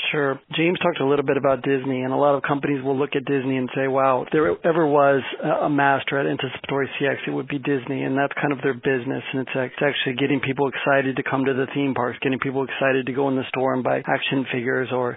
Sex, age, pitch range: male, 40-59, 135-150 Hz